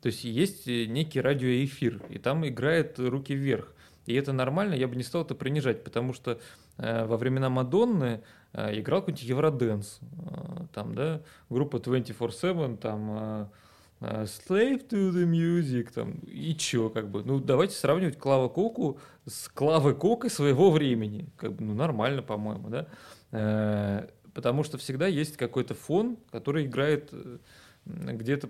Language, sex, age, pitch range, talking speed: Russian, male, 30-49, 120-160 Hz, 150 wpm